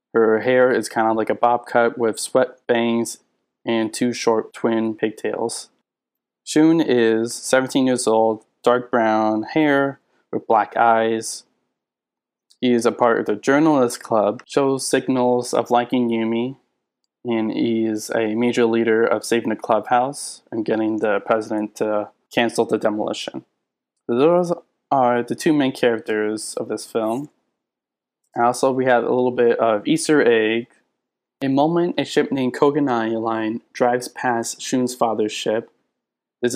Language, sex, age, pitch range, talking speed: English, male, 20-39, 115-125 Hz, 150 wpm